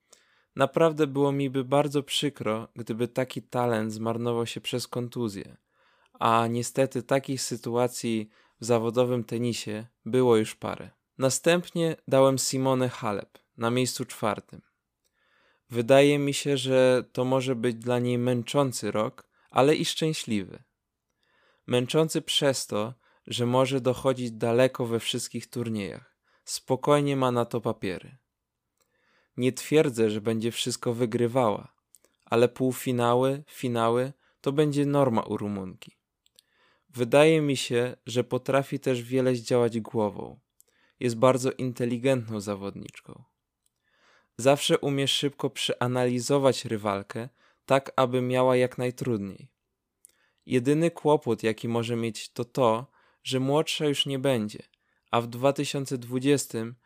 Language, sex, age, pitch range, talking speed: Polish, male, 20-39, 115-135 Hz, 115 wpm